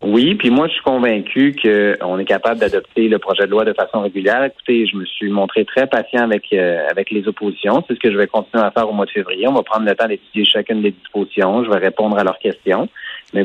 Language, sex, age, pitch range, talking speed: French, male, 30-49, 100-120 Hz, 260 wpm